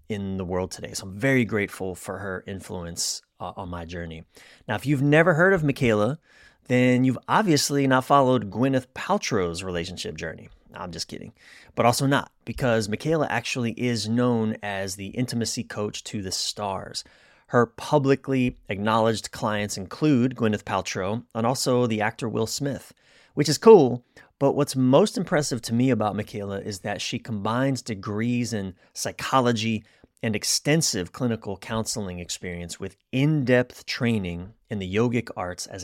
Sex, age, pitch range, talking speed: male, 30-49, 100-130 Hz, 155 wpm